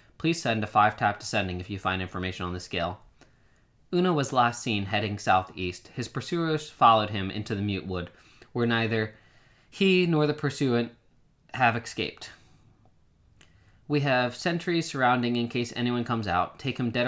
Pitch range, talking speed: 100-120 Hz, 160 wpm